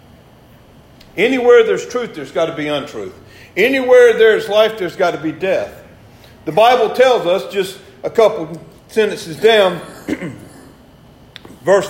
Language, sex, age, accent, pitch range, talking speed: English, male, 50-69, American, 210-290 Hz, 130 wpm